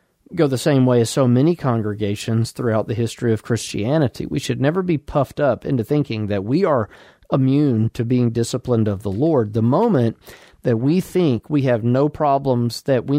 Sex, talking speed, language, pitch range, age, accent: male, 190 wpm, English, 115-150 Hz, 40-59, American